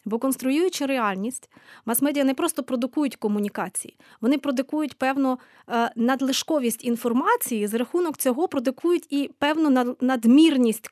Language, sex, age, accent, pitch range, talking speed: Ukrainian, female, 20-39, native, 230-290 Hz, 110 wpm